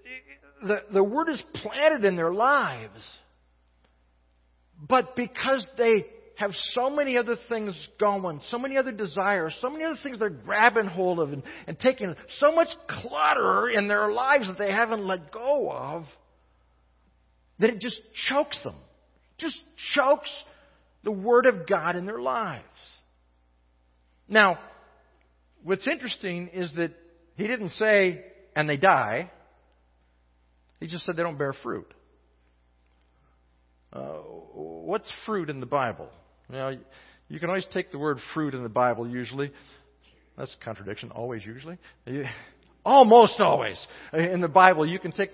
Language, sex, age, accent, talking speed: English, male, 50-69, American, 145 wpm